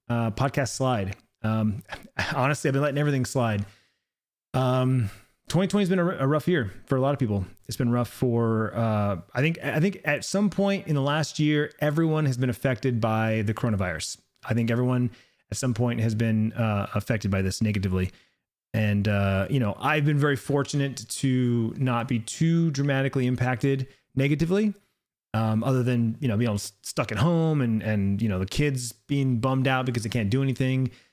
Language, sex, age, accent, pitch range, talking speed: English, male, 30-49, American, 110-140 Hz, 190 wpm